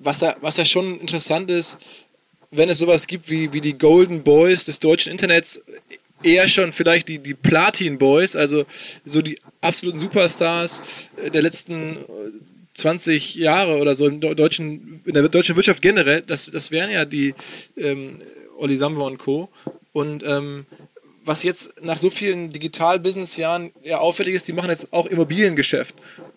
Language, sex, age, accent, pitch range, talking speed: German, male, 20-39, German, 150-175 Hz, 155 wpm